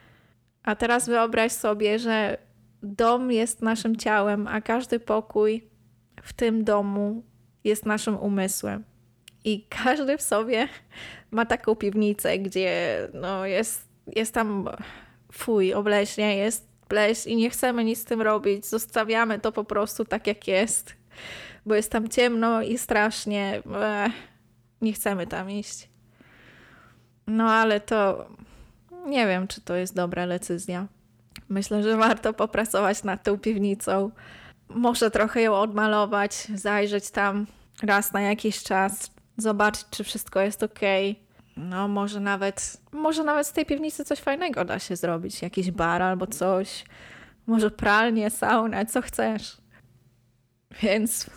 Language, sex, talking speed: English, female, 130 wpm